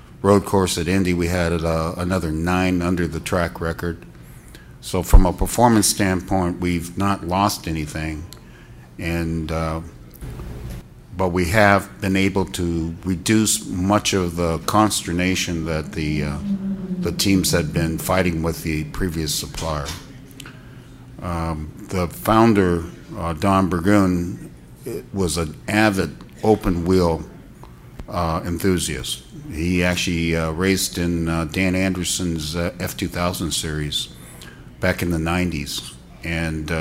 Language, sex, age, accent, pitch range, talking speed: English, male, 60-79, American, 80-95 Hz, 125 wpm